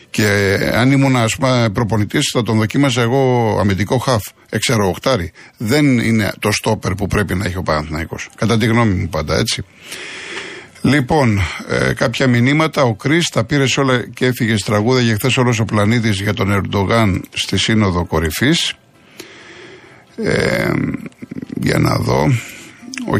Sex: male